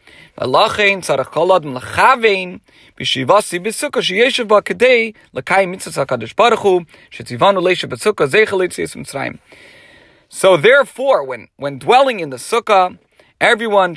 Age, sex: 40-59, male